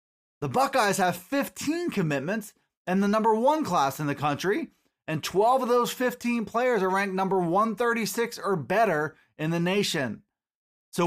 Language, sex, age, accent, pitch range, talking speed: English, male, 20-39, American, 185-235 Hz, 155 wpm